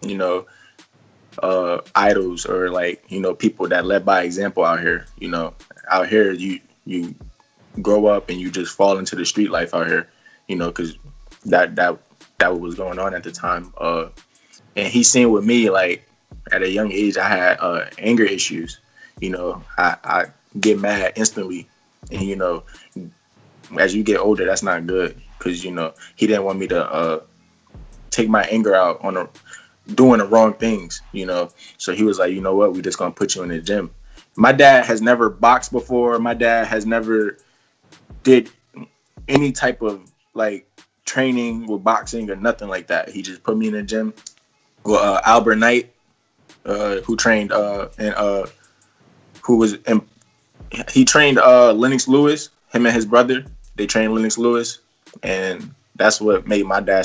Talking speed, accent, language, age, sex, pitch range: 180 wpm, American, English, 20-39, male, 95-115 Hz